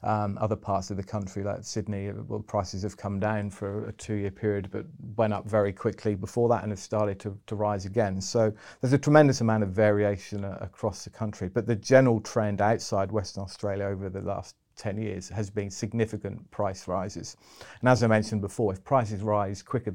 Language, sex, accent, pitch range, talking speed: English, male, British, 100-110 Hz, 205 wpm